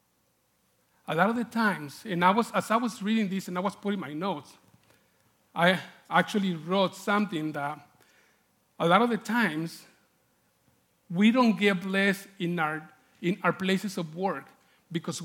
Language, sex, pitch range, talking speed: English, male, 175-220 Hz, 160 wpm